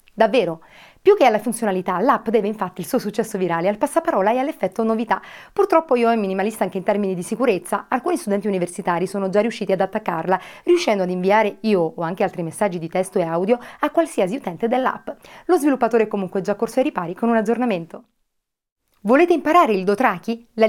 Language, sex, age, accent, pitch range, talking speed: Italian, female, 30-49, native, 190-235 Hz, 195 wpm